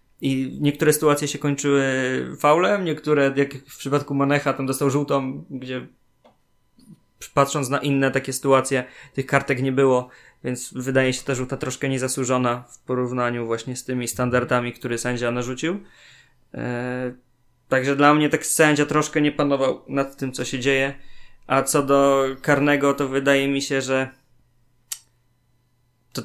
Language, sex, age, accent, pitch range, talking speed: Polish, male, 20-39, native, 130-145 Hz, 145 wpm